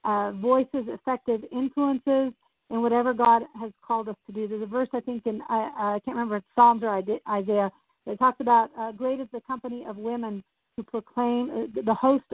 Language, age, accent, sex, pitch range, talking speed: English, 50-69, American, female, 215-255 Hz, 205 wpm